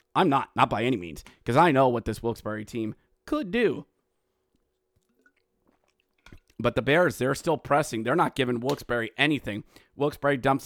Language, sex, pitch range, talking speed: English, male, 150-230 Hz, 160 wpm